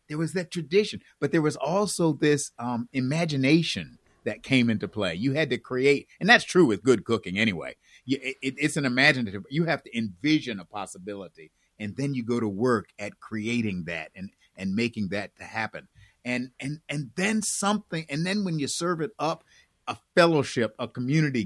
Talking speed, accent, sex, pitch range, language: 190 wpm, American, male, 115-165 Hz, English